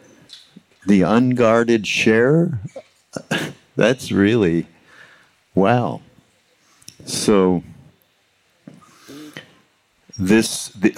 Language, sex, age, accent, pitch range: English, male, 60-79, American, 90-110 Hz